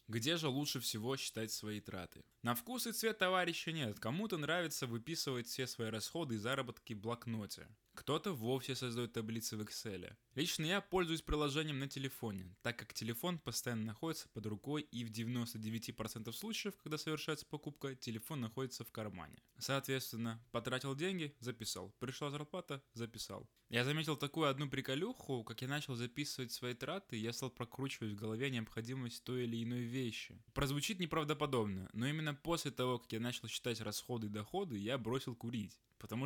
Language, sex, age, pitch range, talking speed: Russian, male, 20-39, 115-145 Hz, 165 wpm